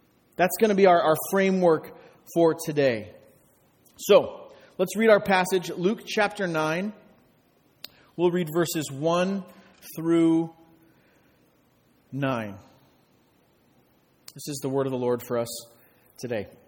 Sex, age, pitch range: male, 40-59, 135-190 Hz